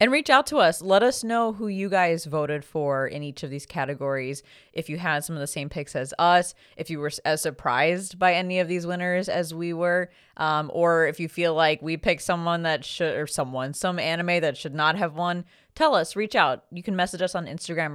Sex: female